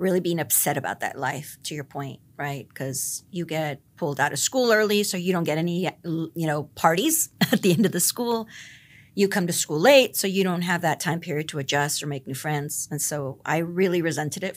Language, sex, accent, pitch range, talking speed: English, female, American, 150-200 Hz, 230 wpm